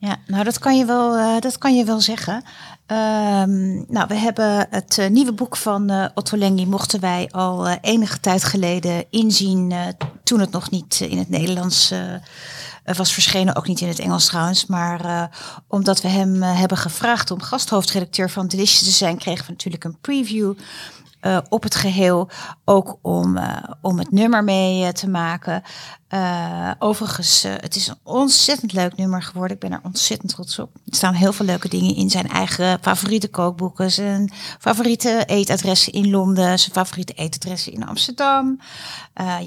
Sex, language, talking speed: female, Dutch, 180 wpm